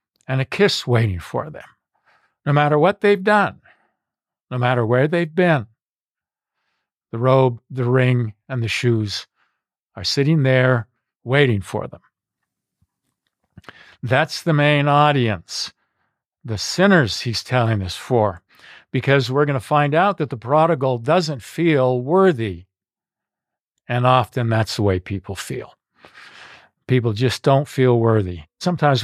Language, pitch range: English, 115-145 Hz